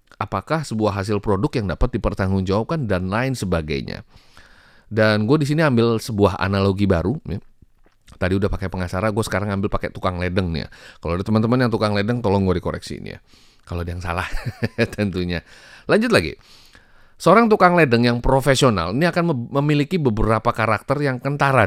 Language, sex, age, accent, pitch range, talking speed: Indonesian, male, 30-49, native, 95-115 Hz, 165 wpm